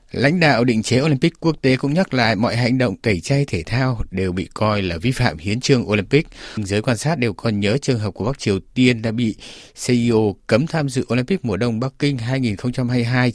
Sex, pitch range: male, 100-130 Hz